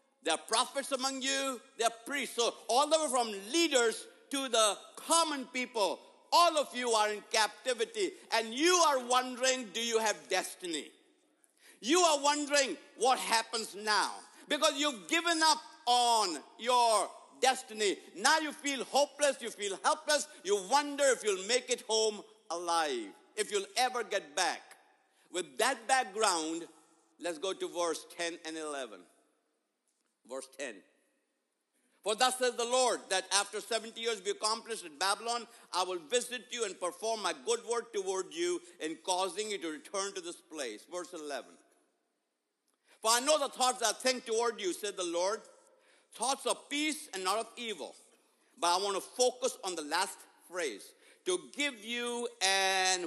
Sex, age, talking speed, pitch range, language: male, 60-79, 165 wpm, 210-315 Hz, English